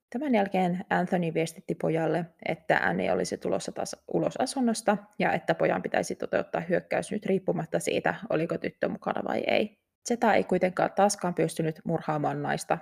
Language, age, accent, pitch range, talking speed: Finnish, 20-39, native, 155-220 Hz, 155 wpm